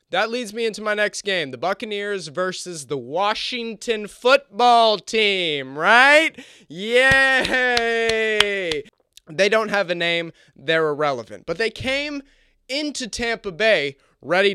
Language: English